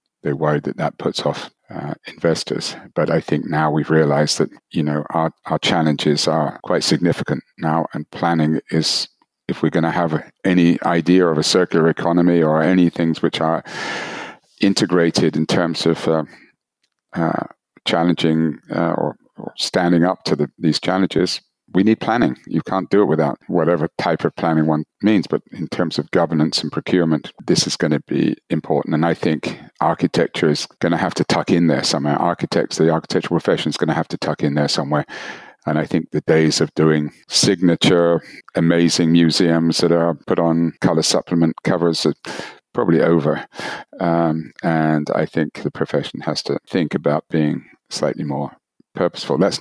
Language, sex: English, male